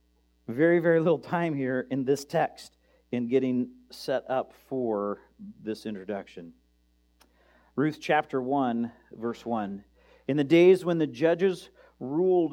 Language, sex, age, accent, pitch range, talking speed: English, male, 50-69, American, 100-145 Hz, 130 wpm